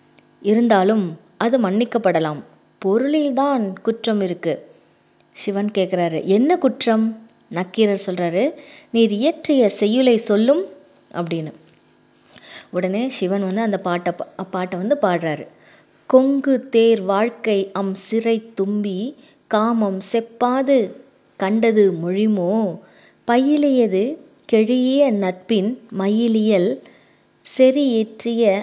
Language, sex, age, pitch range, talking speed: English, female, 20-39, 190-260 Hz, 80 wpm